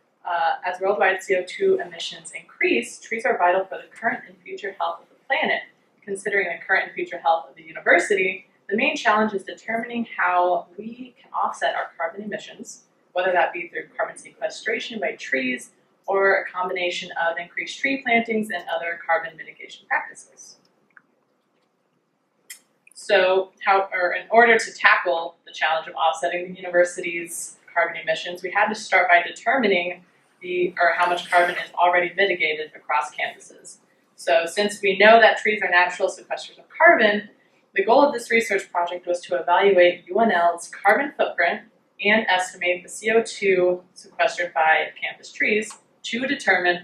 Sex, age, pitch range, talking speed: female, 20-39, 175-220 Hz, 155 wpm